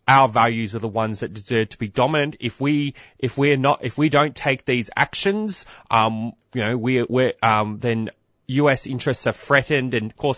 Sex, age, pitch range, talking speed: male, 20-39, 110-135 Hz, 200 wpm